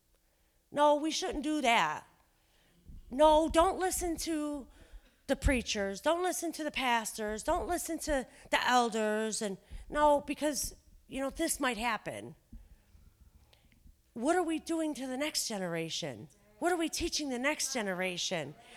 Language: English